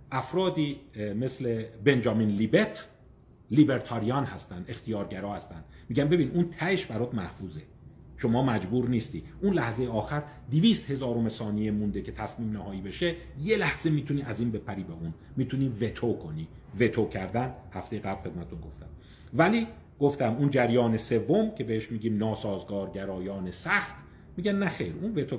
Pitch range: 105-150 Hz